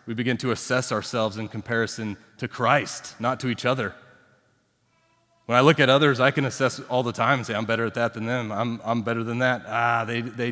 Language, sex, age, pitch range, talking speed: English, male, 30-49, 105-125 Hz, 230 wpm